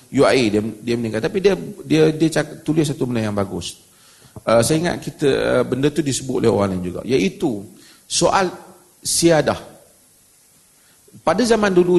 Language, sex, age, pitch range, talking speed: Malay, male, 40-59, 130-170 Hz, 170 wpm